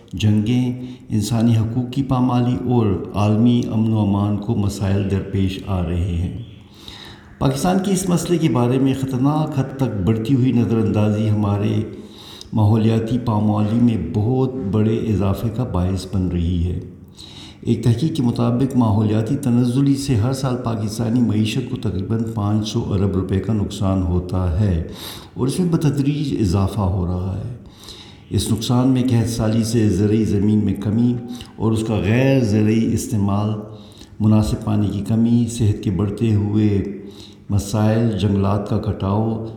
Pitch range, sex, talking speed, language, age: 100-120 Hz, male, 150 wpm, Urdu, 60-79